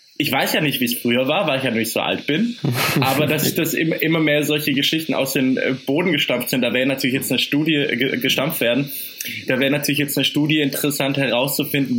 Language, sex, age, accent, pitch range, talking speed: German, male, 20-39, German, 135-160 Hz, 215 wpm